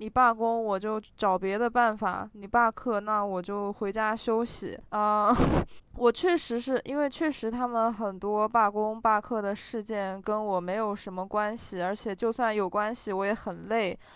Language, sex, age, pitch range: Chinese, female, 20-39, 195-230 Hz